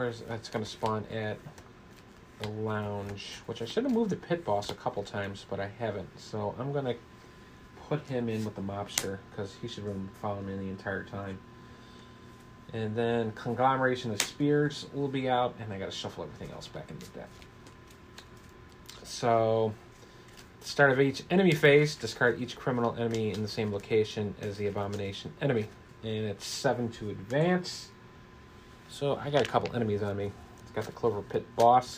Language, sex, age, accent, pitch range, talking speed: English, male, 30-49, American, 105-130 Hz, 180 wpm